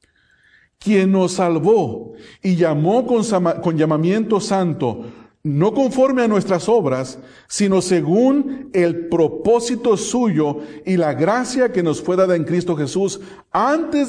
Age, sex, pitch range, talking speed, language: 40-59, male, 160-210 Hz, 130 wpm, English